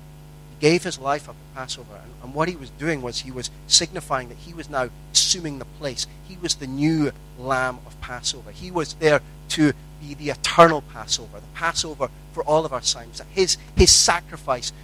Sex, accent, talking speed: male, British, 200 wpm